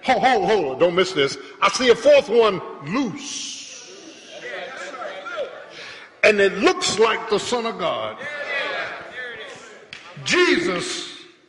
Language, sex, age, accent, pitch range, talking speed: English, male, 50-69, American, 285-380 Hz, 110 wpm